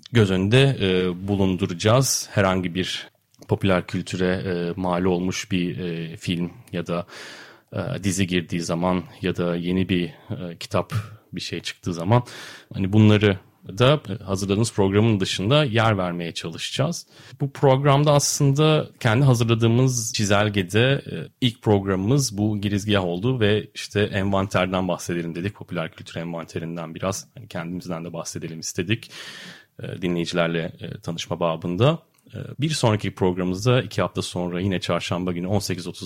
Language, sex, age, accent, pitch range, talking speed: Turkish, male, 30-49, native, 90-115 Hz, 130 wpm